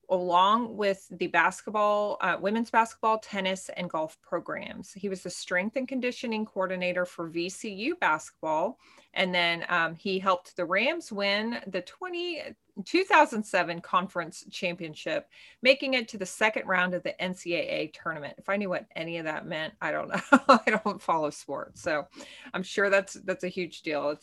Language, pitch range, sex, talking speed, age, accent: English, 175-220 Hz, female, 170 wpm, 20-39, American